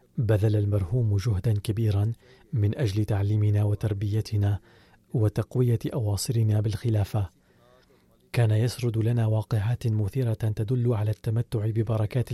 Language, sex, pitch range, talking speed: Arabic, male, 105-120 Hz, 95 wpm